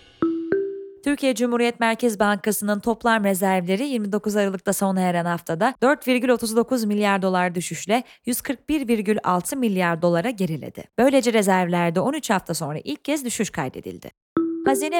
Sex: female